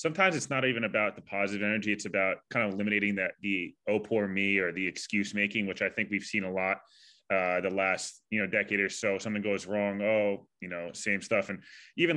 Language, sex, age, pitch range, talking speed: English, male, 20-39, 95-115 Hz, 225 wpm